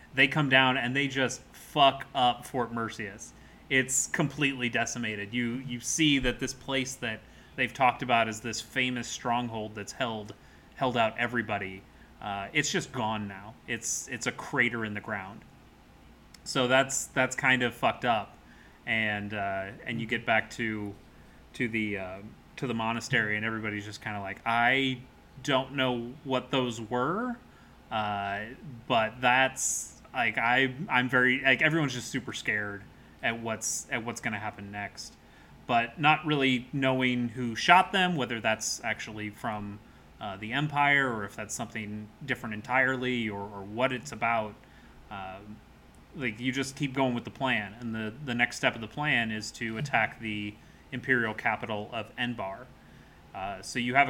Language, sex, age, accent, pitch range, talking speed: English, male, 30-49, American, 110-130 Hz, 165 wpm